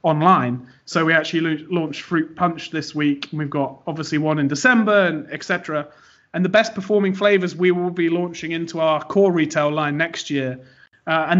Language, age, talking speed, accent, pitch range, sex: English, 30-49, 185 wpm, British, 150-175 Hz, male